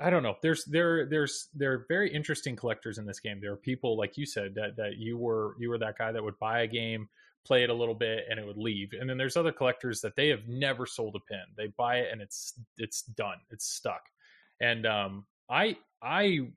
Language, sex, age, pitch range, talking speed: English, male, 30-49, 110-135 Hz, 245 wpm